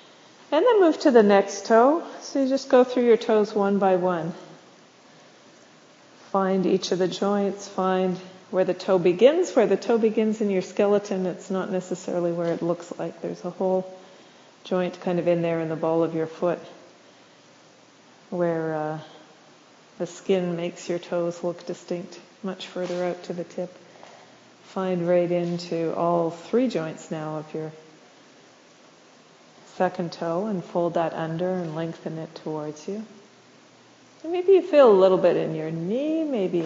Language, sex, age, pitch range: English, female, 40-59, 170-205 Hz